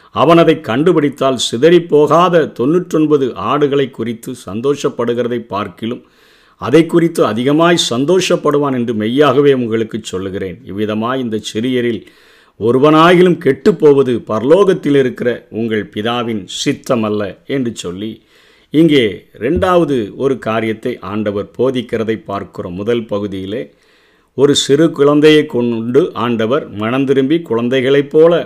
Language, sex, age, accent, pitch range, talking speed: Tamil, male, 50-69, native, 115-155 Hz, 100 wpm